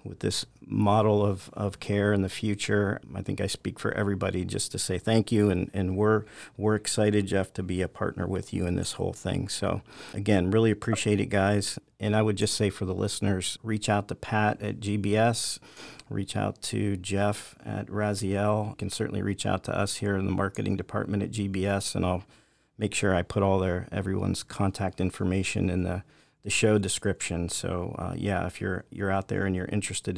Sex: male